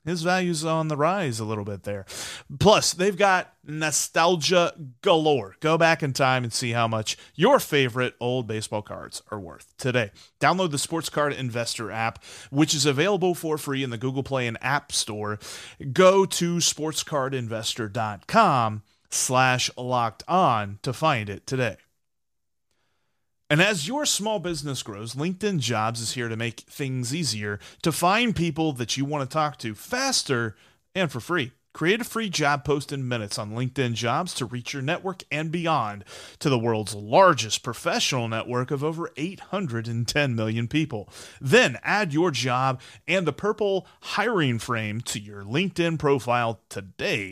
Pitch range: 115-170 Hz